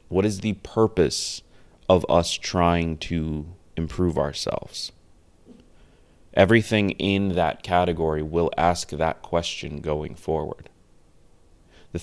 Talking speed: 105 wpm